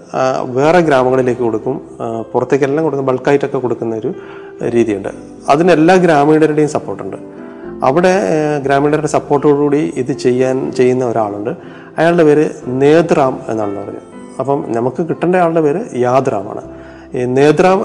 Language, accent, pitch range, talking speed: Malayalam, native, 125-155 Hz, 100 wpm